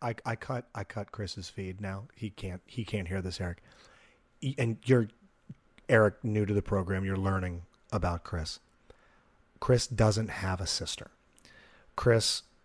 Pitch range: 95-120 Hz